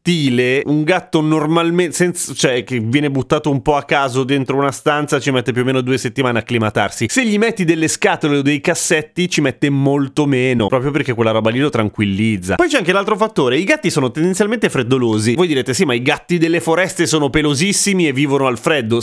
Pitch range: 115-170 Hz